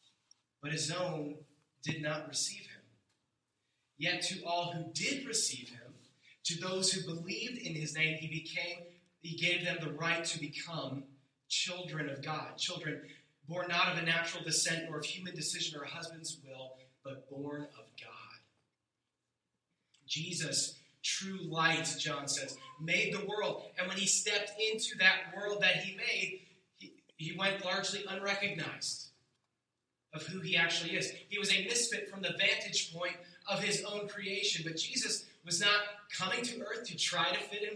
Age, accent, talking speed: 30-49, American, 165 wpm